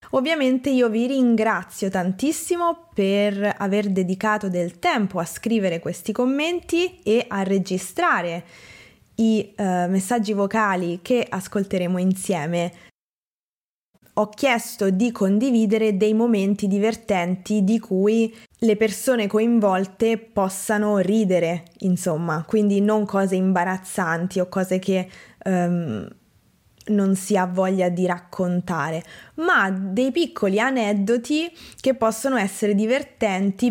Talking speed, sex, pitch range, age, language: 105 wpm, female, 185-235 Hz, 20-39, Italian